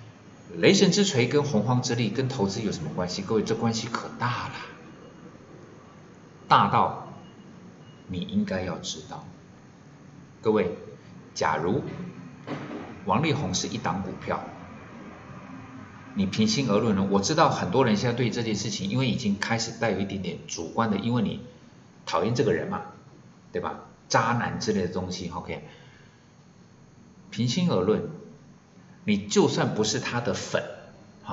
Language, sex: Chinese, male